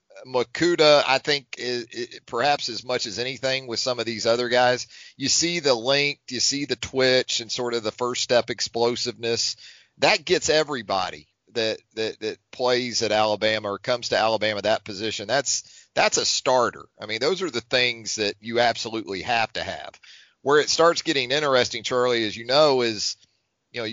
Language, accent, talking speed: English, American, 185 wpm